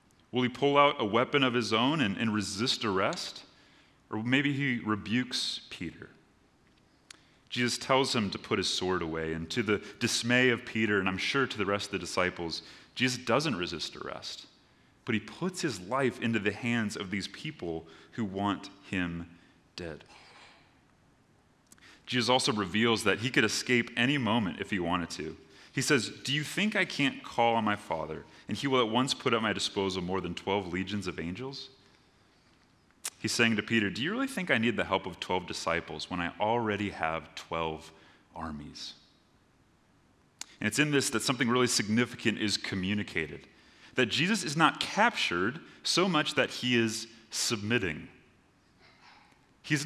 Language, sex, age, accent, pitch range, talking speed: English, male, 30-49, American, 100-130 Hz, 170 wpm